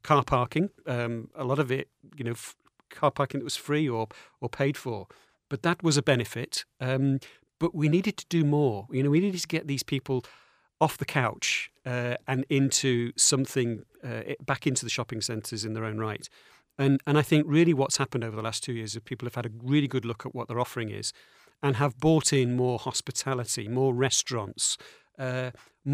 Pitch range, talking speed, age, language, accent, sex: 120-145 Hz, 210 wpm, 50-69, English, British, male